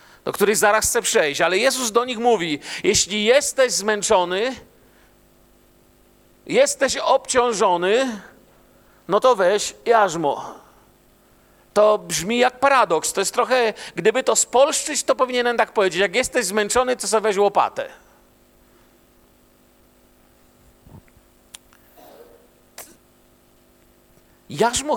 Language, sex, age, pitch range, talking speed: Polish, male, 50-69, 195-245 Hz, 100 wpm